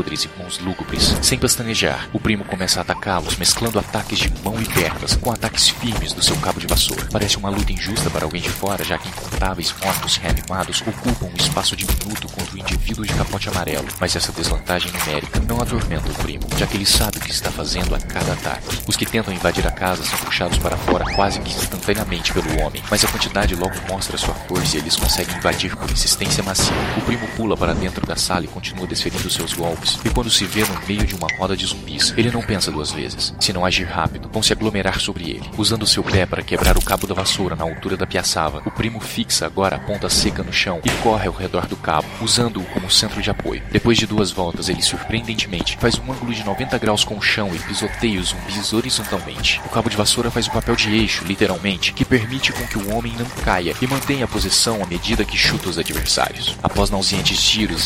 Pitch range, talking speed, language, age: 90-110 Hz, 225 wpm, Portuguese, 40-59